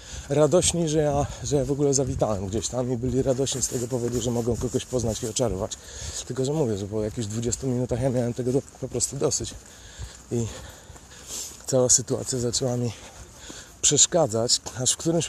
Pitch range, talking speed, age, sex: 110-140 Hz, 175 wpm, 30-49, male